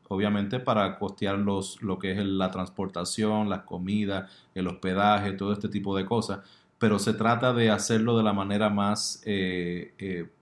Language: Spanish